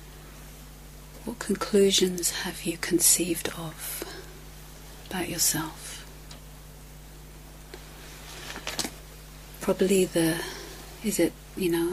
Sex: female